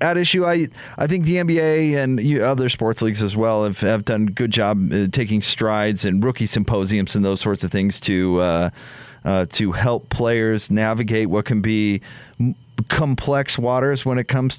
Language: English